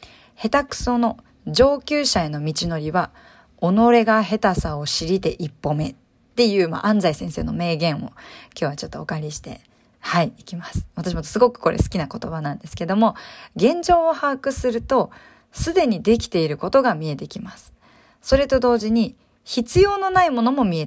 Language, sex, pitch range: Japanese, female, 175-255 Hz